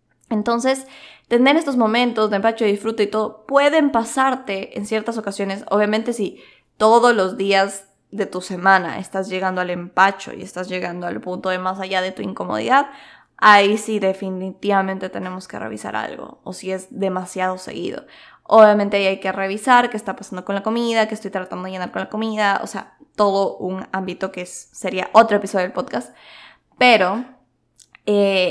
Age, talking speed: 20-39, 175 wpm